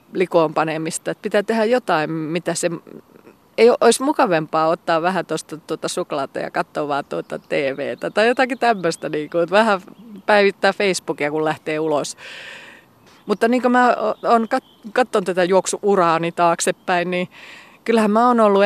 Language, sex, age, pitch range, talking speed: Finnish, female, 30-49, 160-195 Hz, 150 wpm